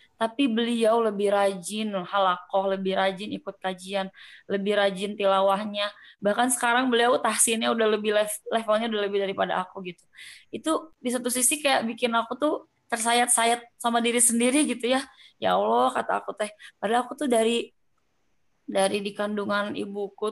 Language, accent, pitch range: Indonesian, native, 205-250 Hz